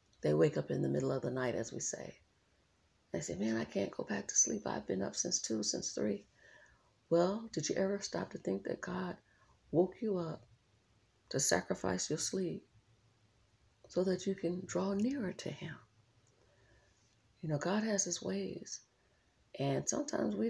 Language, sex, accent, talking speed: English, female, American, 180 wpm